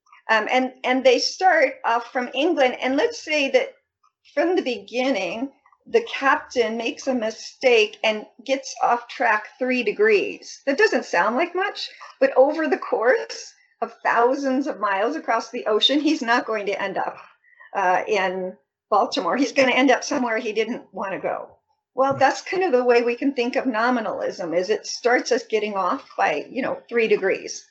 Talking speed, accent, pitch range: 180 wpm, American, 240-355 Hz